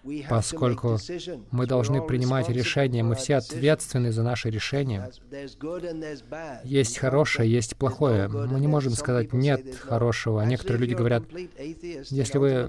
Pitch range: 120-145 Hz